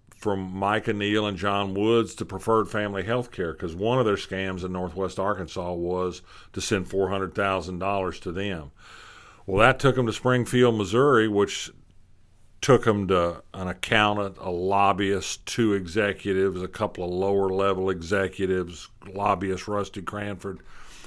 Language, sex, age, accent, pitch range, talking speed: English, male, 50-69, American, 95-110 Hz, 145 wpm